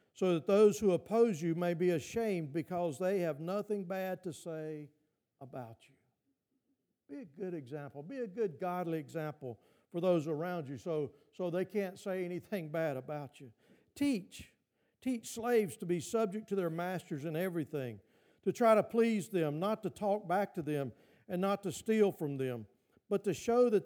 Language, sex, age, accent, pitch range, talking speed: English, male, 50-69, American, 150-200 Hz, 180 wpm